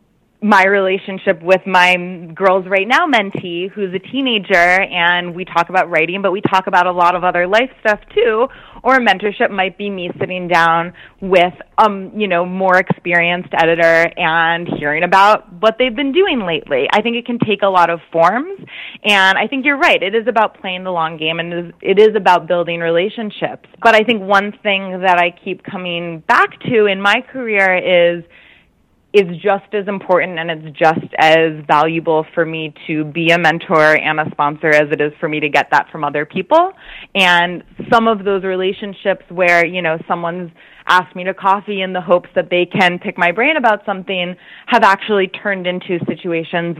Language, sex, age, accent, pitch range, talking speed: English, female, 20-39, American, 170-205 Hz, 190 wpm